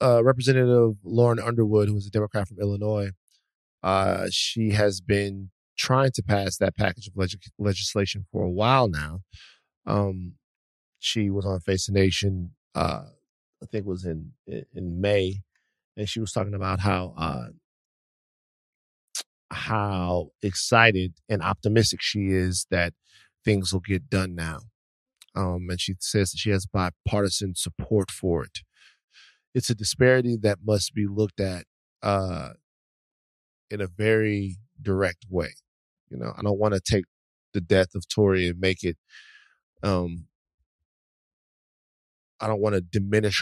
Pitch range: 90-105 Hz